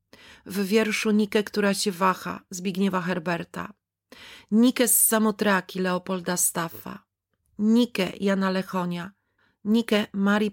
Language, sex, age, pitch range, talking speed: Polish, female, 40-59, 180-215 Hz, 105 wpm